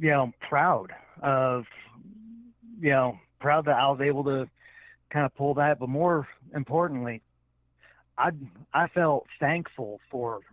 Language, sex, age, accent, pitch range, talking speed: English, male, 40-59, American, 110-150 Hz, 150 wpm